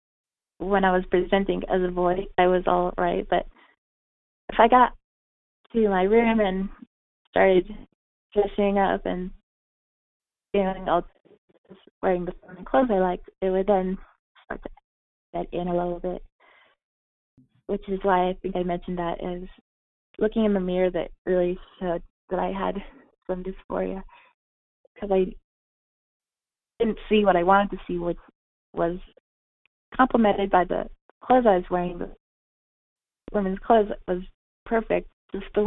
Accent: American